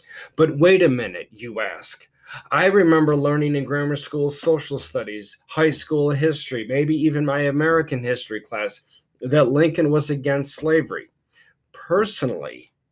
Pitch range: 130-160 Hz